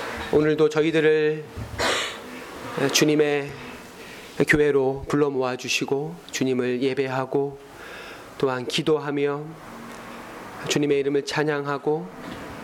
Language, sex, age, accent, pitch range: Korean, male, 30-49, native, 140-190 Hz